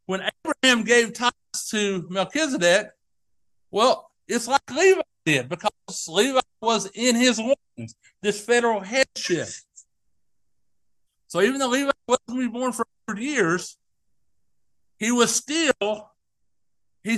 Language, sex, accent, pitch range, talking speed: English, male, American, 175-255 Hz, 110 wpm